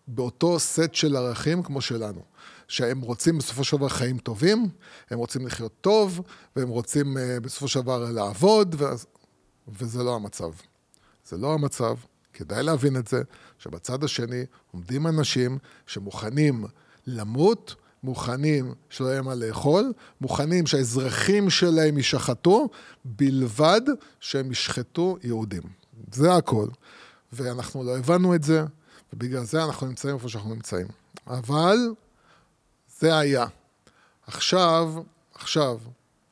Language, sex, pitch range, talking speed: Hebrew, male, 125-160 Hz, 120 wpm